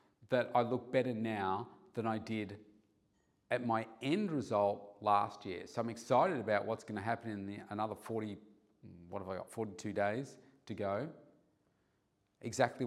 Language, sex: English, male